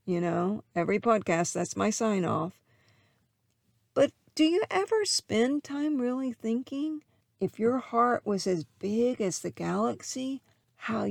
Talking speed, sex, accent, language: 140 wpm, female, American, English